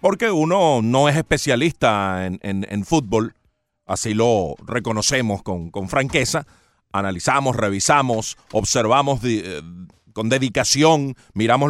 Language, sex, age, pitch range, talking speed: Spanish, male, 40-59, 115-155 Hz, 110 wpm